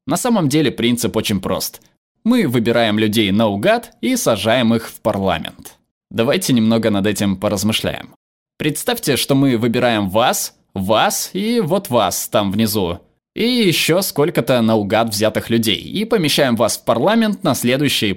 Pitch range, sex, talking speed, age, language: 110-160 Hz, male, 145 wpm, 20-39, Russian